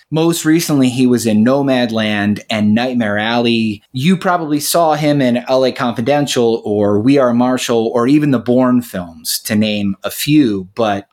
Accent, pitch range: American, 105-145 Hz